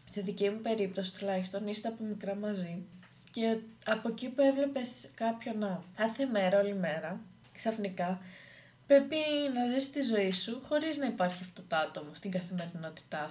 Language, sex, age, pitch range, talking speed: Greek, female, 20-39, 190-235 Hz, 150 wpm